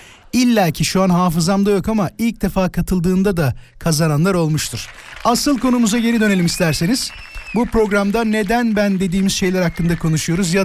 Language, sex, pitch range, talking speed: Turkish, male, 155-220 Hz, 150 wpm